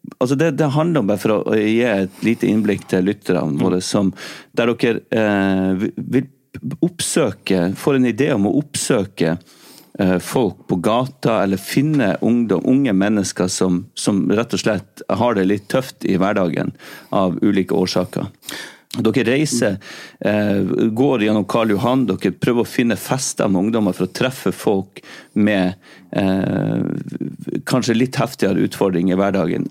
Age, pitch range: 40-59, 95-125 Hz